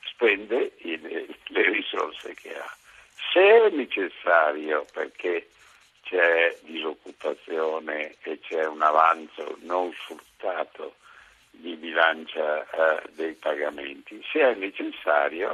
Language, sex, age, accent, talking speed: Italian, male, 60-79, native, 100 wpm